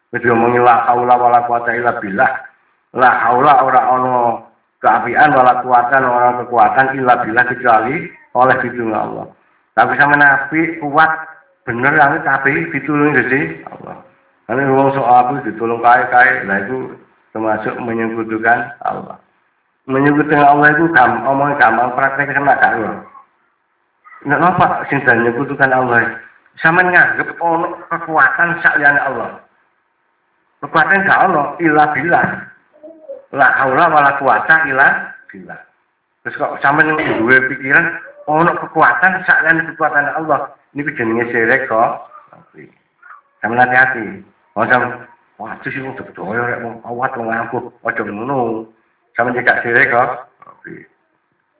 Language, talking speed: Indonesian, 115 wpm